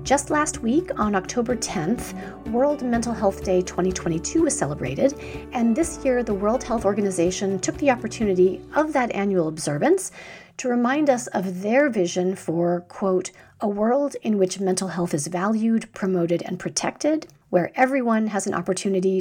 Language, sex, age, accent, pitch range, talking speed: English, female, 40-59, American, 185-240 Hz, 160 wpm